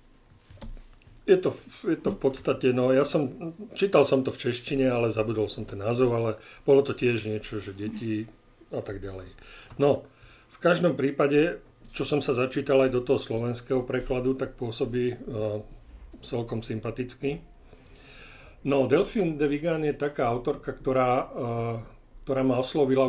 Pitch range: 115-135 Hz